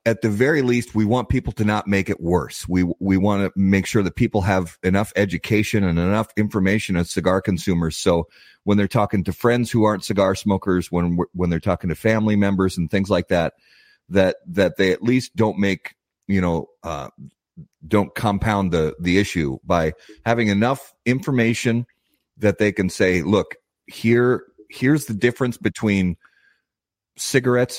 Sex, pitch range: male, 90-110 Hz